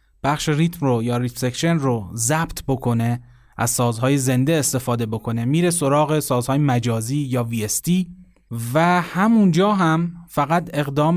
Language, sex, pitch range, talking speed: Persian, male, 125-155 Hz, 135 wpm